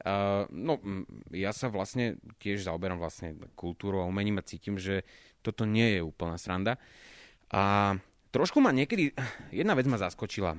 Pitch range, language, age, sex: 105-130 Hz, Slovak, 20-39, male